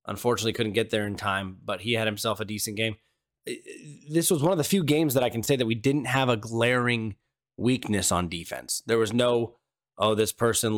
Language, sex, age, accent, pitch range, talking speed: English, male, 20-39, American, 105-125 Hz, 215 wpm